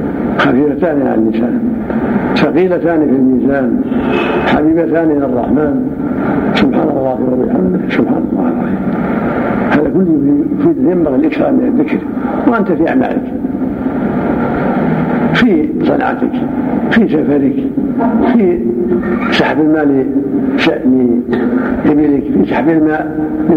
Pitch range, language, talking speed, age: 165-270 Hz, Arabic, 95 wpm, 70-89